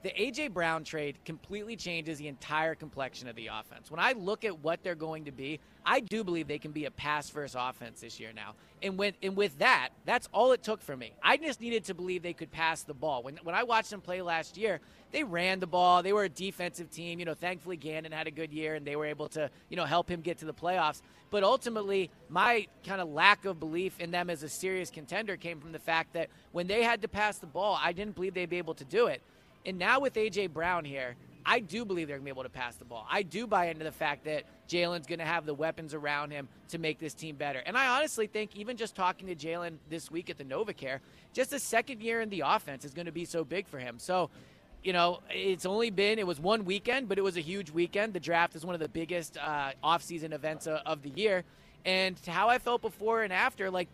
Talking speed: 260 wpm